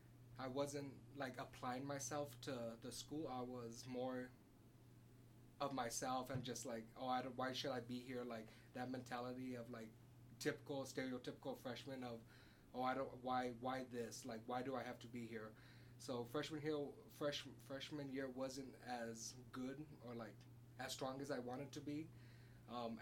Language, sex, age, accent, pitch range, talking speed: English, male, 20-39, American, 120-135 Hz, 170 wpm